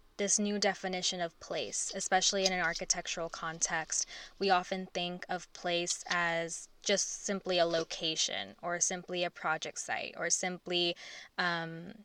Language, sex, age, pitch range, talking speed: English, female, 10-29, 175-200 Hz, 140 wpm